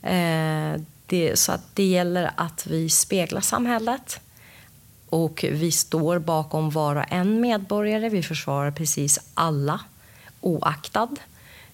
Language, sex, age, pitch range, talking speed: Swedish, female, 30-49, 155-210 Hz, 100 wpm